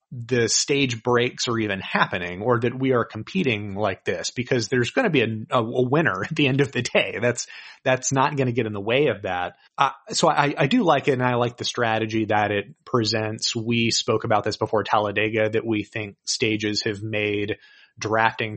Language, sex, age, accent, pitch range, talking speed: English, male, 30-49, American, 110-130 Hz, 215 wpm